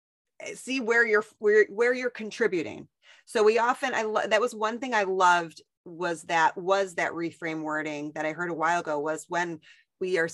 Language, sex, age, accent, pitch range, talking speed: English, female, 30-49, American, 175-215 Hz, 195 wpm